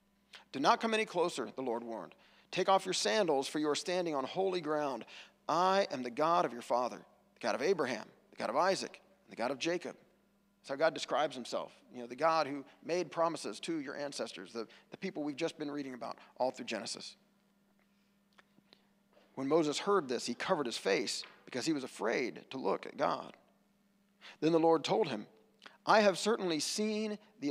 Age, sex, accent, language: 40-59, male, American, English